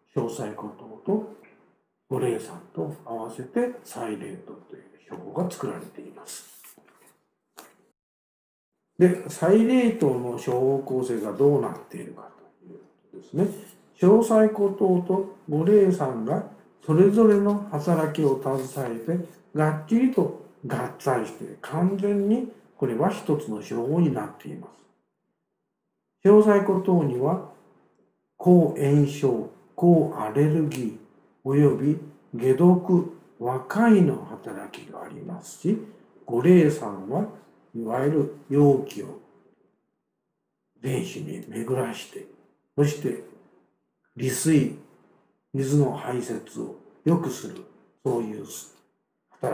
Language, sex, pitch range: Japanese, male, 130-200 Hz